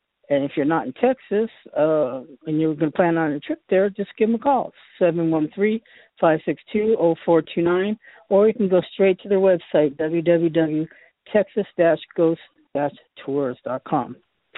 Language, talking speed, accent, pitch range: English, 130 wpm, American, 155-180 Hz